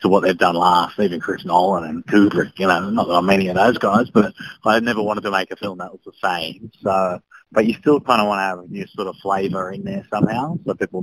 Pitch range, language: 95-110 Hz, English